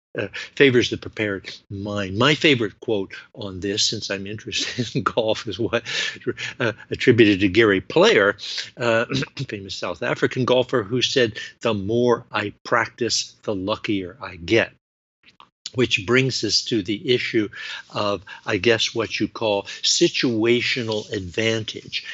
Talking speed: 140 wpm